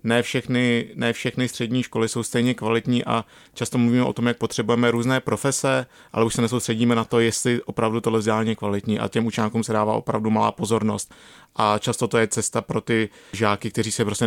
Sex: male